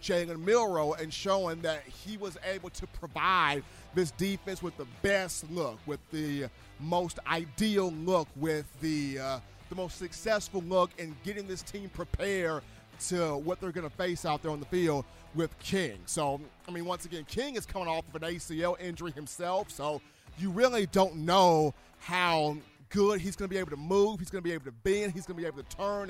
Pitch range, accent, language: 155-200 Hz, American, English